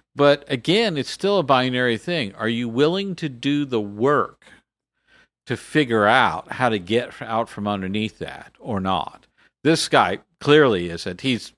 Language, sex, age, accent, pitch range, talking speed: English, male, 50-69, American, 115-160 Hz, 160 wpm